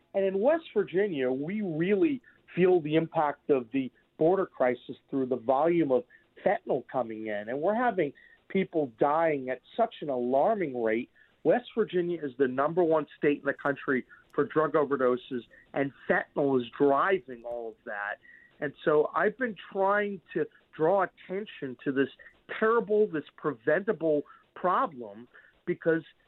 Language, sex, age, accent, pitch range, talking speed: English, male, 40-59, American, 145-195 Hz, 150 wpm